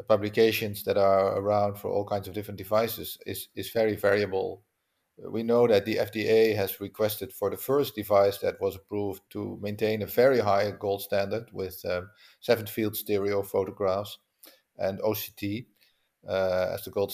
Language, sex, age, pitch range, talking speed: English, male, 50-69, 100-110 Hz, 165 wpm